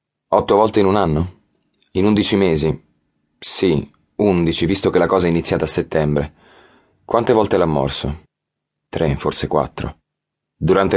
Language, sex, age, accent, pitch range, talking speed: Italian, male, 30-49, native, 80-95 Hz, 140 wpm